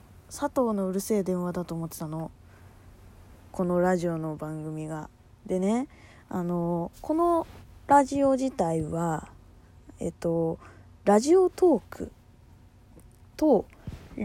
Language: Japanese